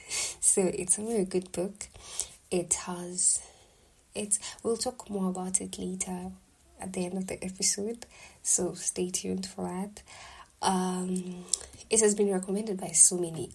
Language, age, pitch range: English, 20-39, 180-210 Hz